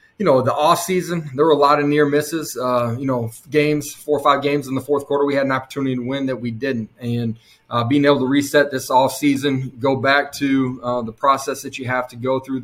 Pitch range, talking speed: 125-145 Hz, 255 wpm